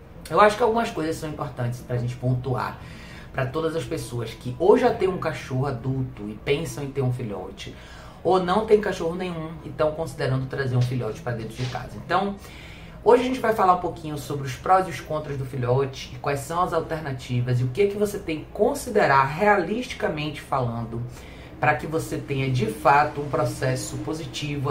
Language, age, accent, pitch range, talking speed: Portuguese, 30-49, Brazilian, 125-160 Hz, 200 wpm